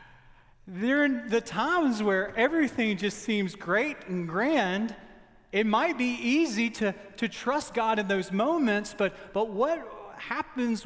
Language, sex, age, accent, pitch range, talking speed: English, male, 40-59, American, 150-235 Hz, 140 wpm